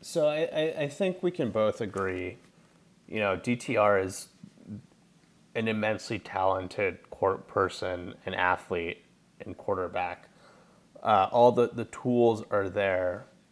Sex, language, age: male, English, 30-49